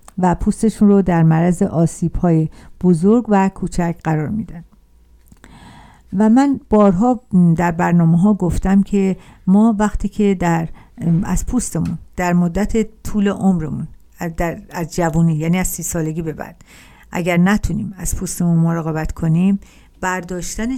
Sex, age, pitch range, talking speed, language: female, 50-69, 165-200 Hz, 135 wpm, Persian